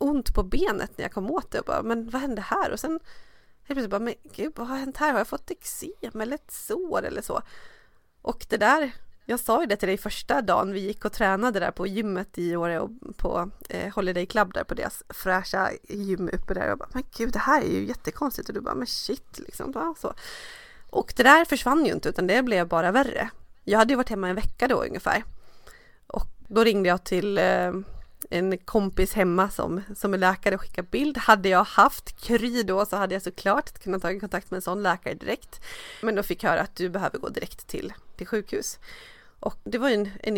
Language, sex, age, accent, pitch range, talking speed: Swedish, female, 20-39, native, 190-250 Hz, 230 wpm